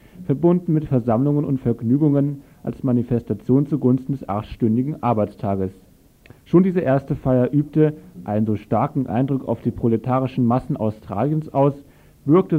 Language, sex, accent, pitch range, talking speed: German, male, German, 115-140 Hz, 130 wpm